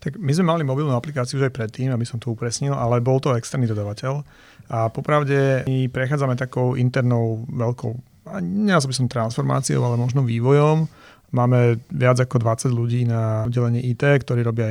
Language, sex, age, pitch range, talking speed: Slovak, male, 30-49, 115-130 Hz, 170 wpm